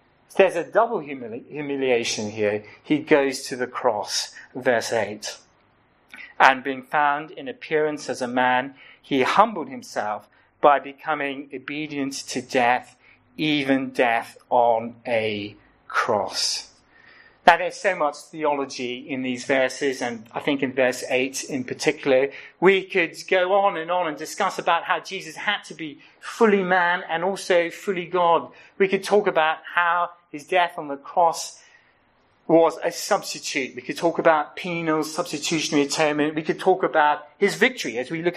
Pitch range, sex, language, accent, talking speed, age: 140-180 Hz, male, English, British, 155 wpm, 40-59